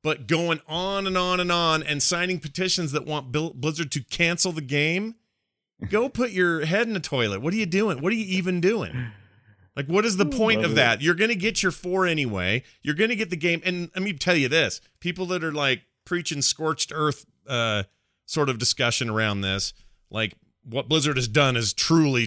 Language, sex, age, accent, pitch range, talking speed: English, male, 40-59, American, 135-185 Hz, 215 wpm